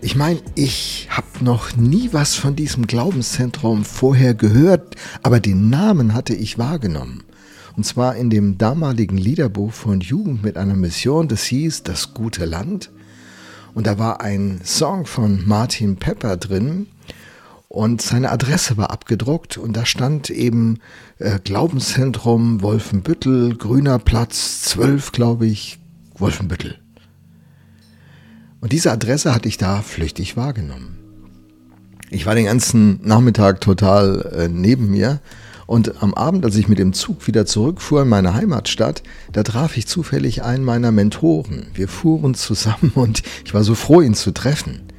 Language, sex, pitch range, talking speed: German, male, 100-125 Hz, 145 wpm